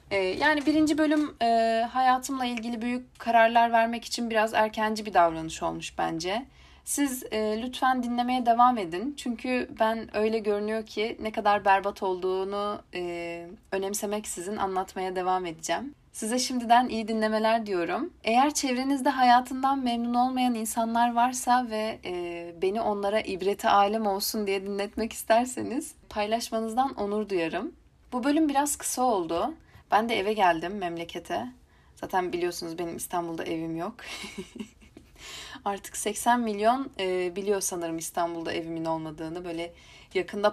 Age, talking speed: 30-49, 125 wpm